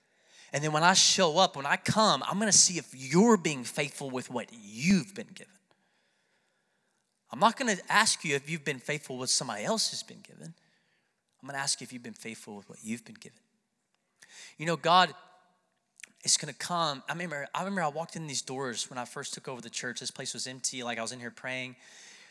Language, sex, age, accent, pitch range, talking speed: English, male, 30-49, American, 130-195 Hz, 230 wpm